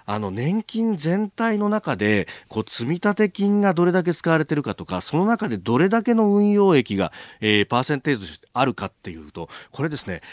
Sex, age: male, 40-59